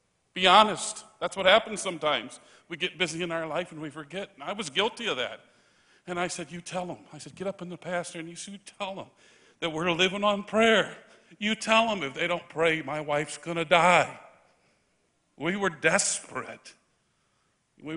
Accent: American